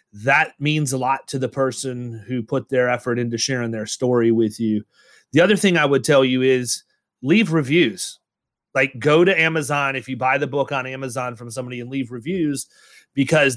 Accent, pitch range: American, 120-140 Hz